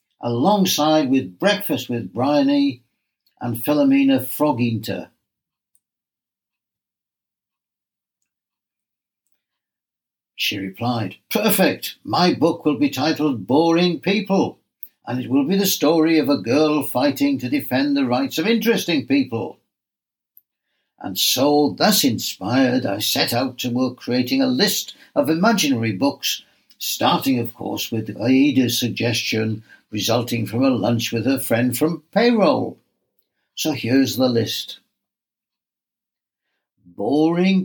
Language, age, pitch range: English, 60-79, 120-180 Hz